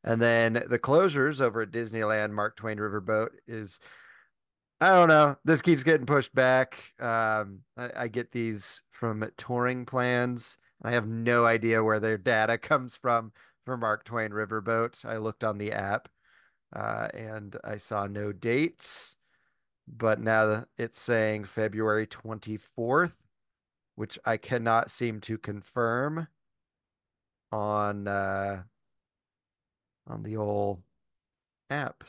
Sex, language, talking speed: male, English, 130 wpm